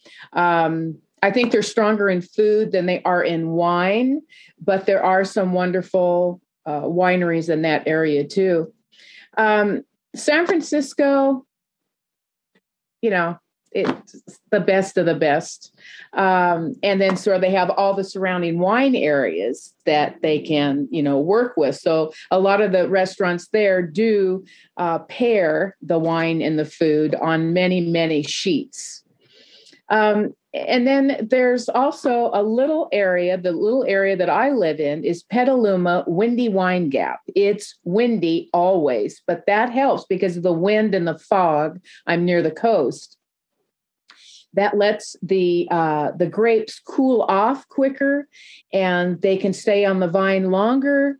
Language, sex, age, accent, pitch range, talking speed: English, female, 40-59, American, 175-225 Hz, 150 wpm